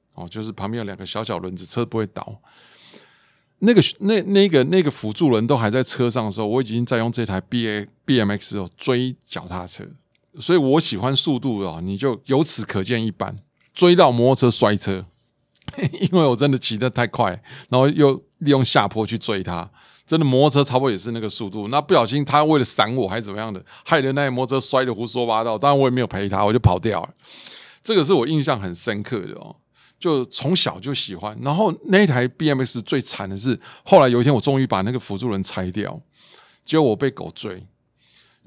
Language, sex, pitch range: Chinese, male, 105-145 Hz